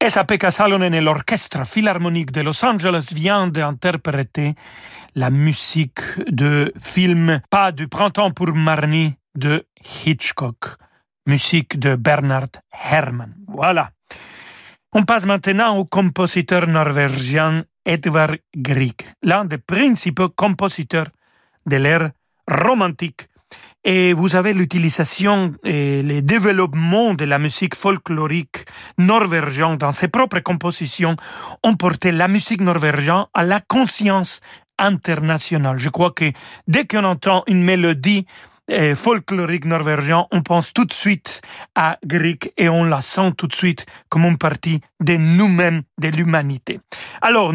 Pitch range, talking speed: 155-190 Hz, 125 wpm